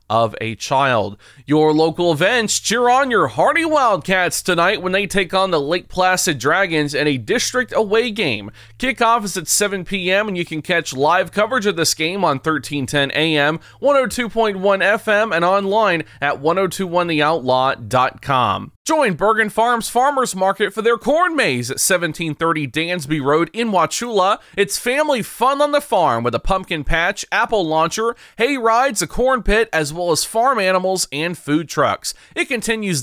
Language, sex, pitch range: English, male, 155-225 Hz